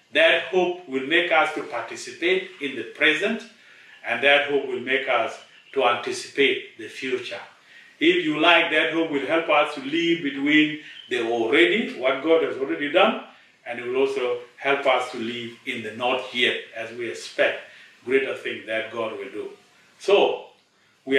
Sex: male